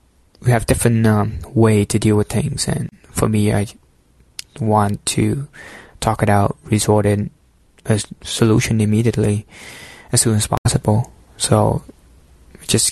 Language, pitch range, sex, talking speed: English, 105-120 Hz, male, 135 wpm